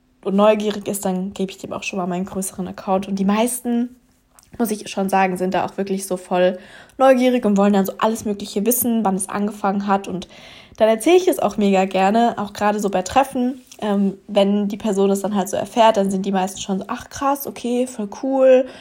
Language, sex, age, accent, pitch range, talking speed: German, female, 20-39, German, 195-230 Hz, 225 wpm